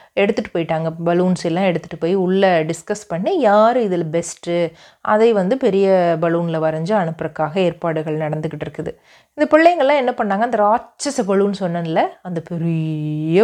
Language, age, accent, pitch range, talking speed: Tamil, 30-49, native, 170-225 Hz, 135 wpm